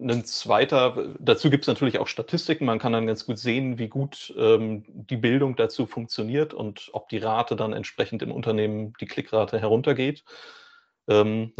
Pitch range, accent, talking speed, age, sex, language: 105-130 Hz, German, 170 wpm, 30-49, male, German